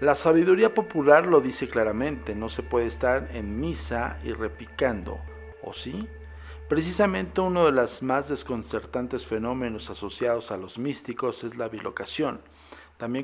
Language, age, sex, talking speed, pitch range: Spanish, 50-69, male, 140 wpm, 110-145 Hz